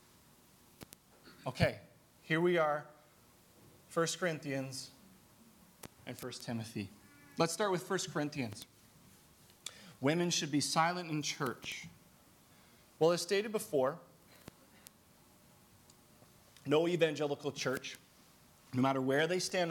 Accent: American